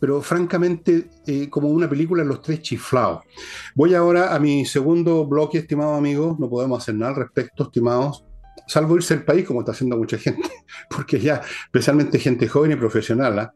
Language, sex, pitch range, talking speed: Spanish, male, 115-150 Hz, 180 wpm